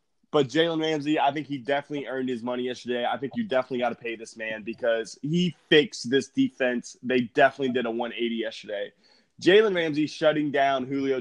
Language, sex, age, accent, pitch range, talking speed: English, male, 20-39, American, 120-150 Hz, 195 wpm